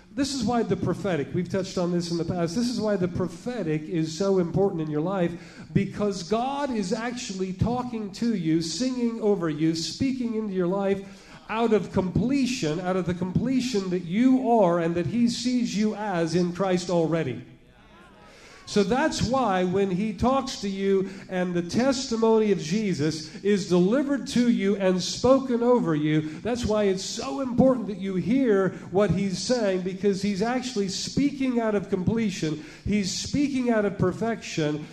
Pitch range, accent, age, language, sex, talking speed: 180-235 Hz, American, 40-59, English, male, 170 wpm